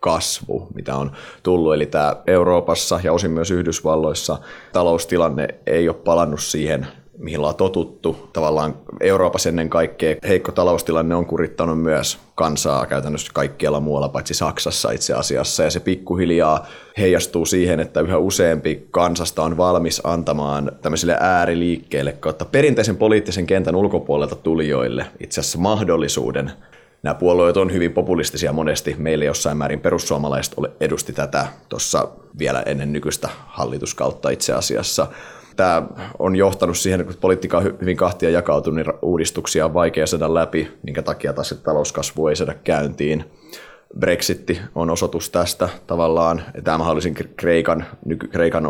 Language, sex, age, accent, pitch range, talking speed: Finnish, male, 30-49, native, 75-90 Hz, 135 wpm